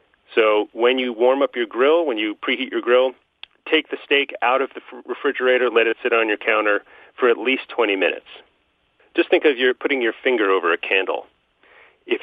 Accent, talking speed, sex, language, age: American, 200 wpm, male, English, 40-59